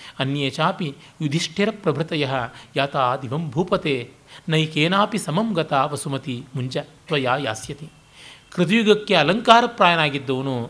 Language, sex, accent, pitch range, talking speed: Kannada, male, native, 140-190 Hz, 90 wpm